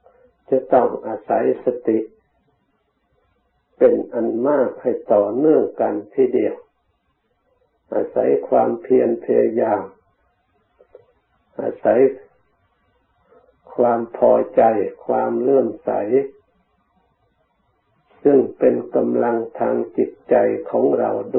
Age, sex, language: 60-79, male, Thai